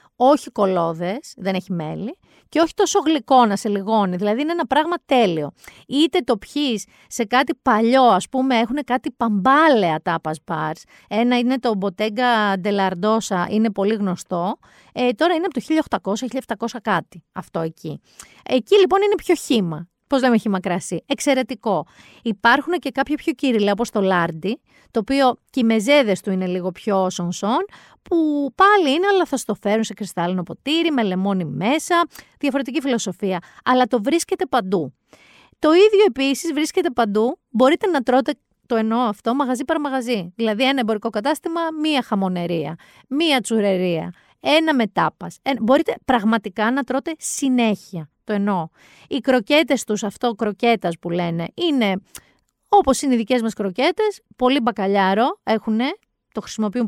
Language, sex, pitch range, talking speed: Greek, female, 200-275 Hz, 150 wpm